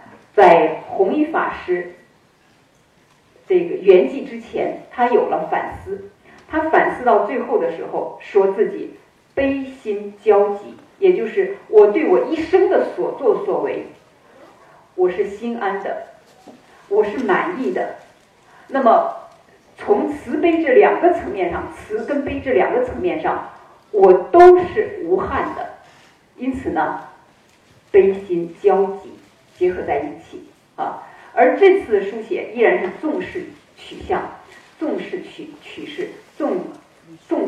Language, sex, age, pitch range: Chinese, female, 50-69, 300-385 Hz